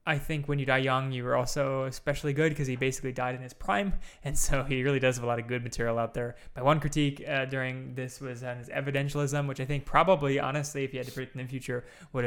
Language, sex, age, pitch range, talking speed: English, male, 20-39, 125-145 Hz, 270 wpm